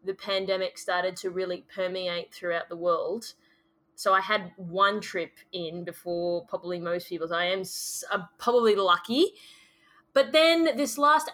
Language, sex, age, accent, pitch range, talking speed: English, female, 20-39, Australian, 185-225 Hz, 145 wpm